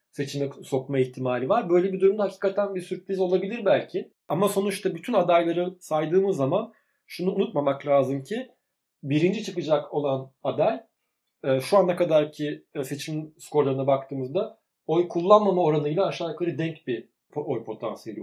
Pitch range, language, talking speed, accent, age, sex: 135-175 Hz, Turkish, 135 wpm, native, 40-59, male